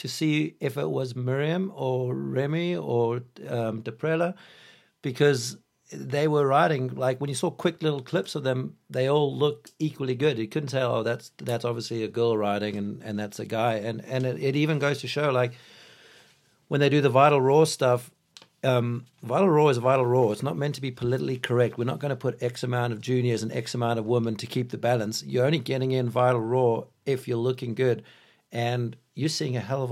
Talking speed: 215 wpm